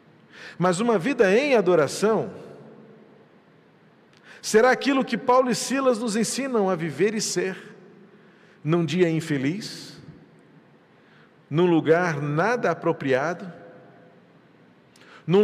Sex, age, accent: male, 40-59, Brazilian